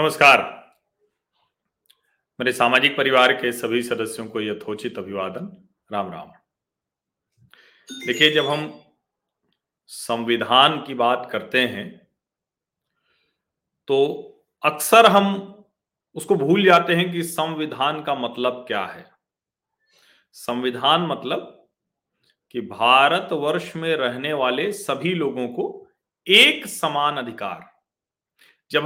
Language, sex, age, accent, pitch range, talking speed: Hindi, male, 40-59, native, 130-190 Hz, 100 wpm